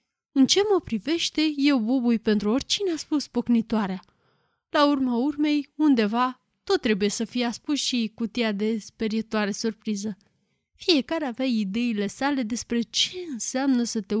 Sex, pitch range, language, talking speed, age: female, 215-280 Hz, Romanian, 145 wpm, 20-39